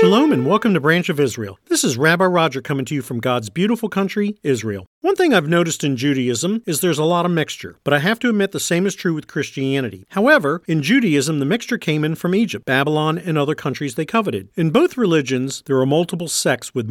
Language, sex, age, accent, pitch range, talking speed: English, male, 50-69, American, 140-205 Hz, 230 wpm